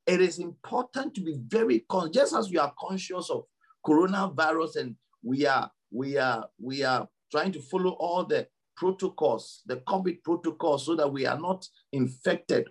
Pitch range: 165-220 Hz